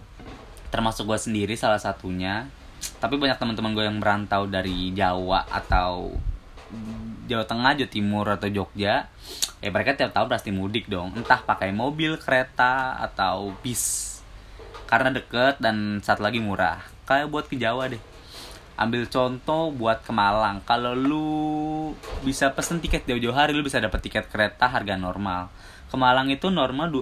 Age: 10-29